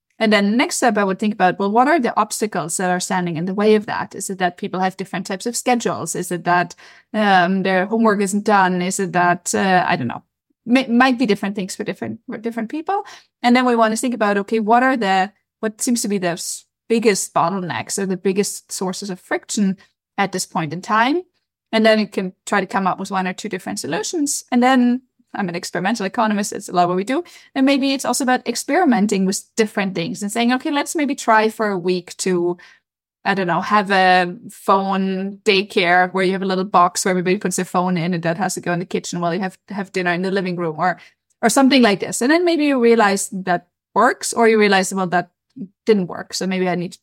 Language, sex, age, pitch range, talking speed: English, female, 20-39, 185-230 Hz, 245 wpm